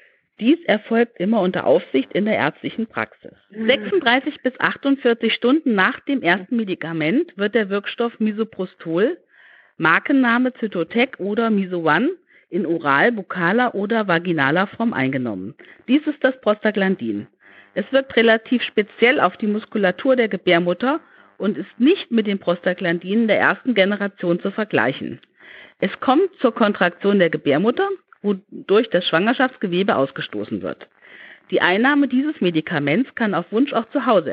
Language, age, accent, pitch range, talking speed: German, 50-69, German, 180-255 Hz, 135 wpm